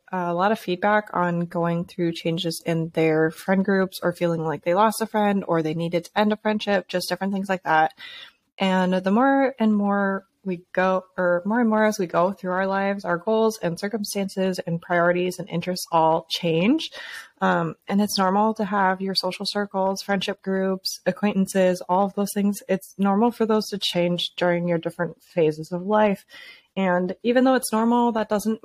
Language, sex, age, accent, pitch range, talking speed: English, female, 20-39, American, 175-210 Hz, 195 wpm